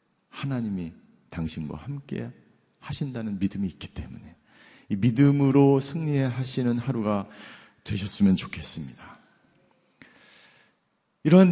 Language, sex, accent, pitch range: Korean, male, native, 120-180 Hz